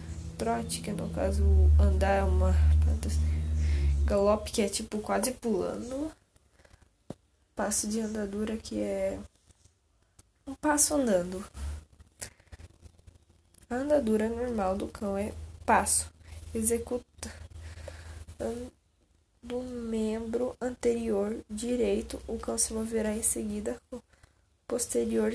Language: Persian